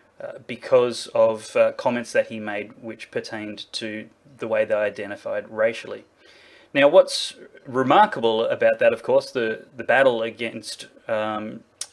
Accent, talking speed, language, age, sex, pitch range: Australian, 140 wpm, English, 30-49, male, 115-150 Hz